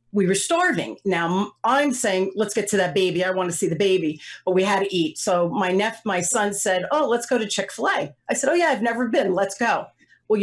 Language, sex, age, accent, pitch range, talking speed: English, female, 40-59, American, 185-225 Hz, 250 wpm